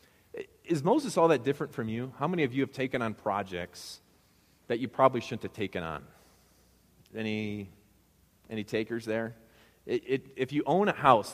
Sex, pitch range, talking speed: male, 95-135 Hz, 175 wpm